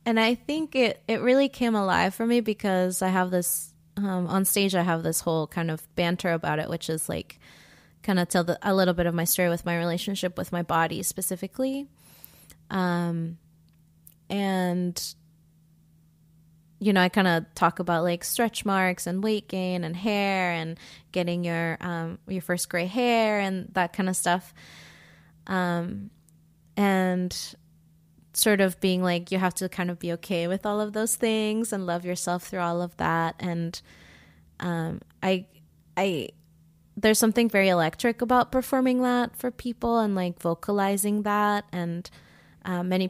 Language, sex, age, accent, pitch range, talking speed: English, female, 20-39, American, 170-205 Hz, 170 wpm